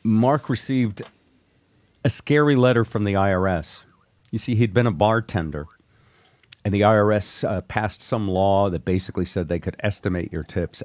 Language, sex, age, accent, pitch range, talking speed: English, male, 50-69, American, 95-120 Hz, 160 wpm